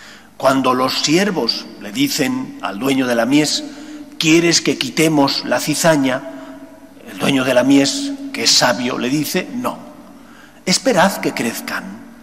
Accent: Spanish